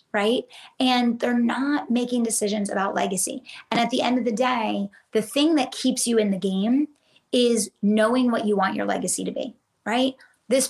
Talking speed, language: 190 wpm, English